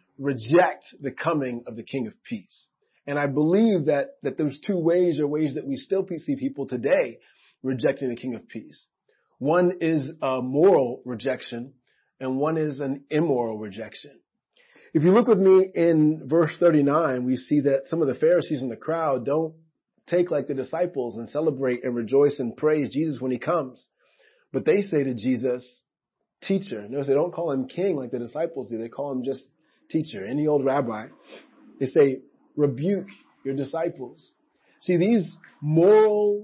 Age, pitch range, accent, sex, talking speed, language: 30-49, 130-175 Hz, American, male, 175 wpm, English